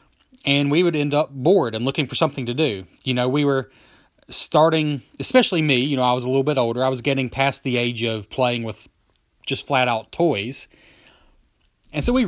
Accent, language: American, English